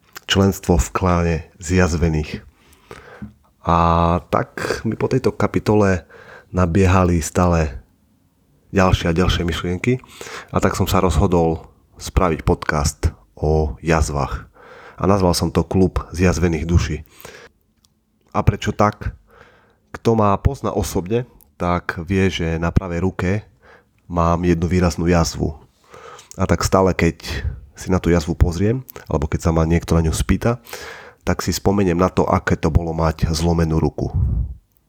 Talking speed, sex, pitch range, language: 130 wpm, male, 85-95 Hz, Slovak